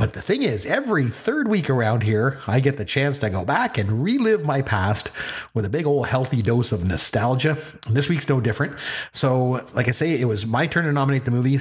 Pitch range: 115-150 Hz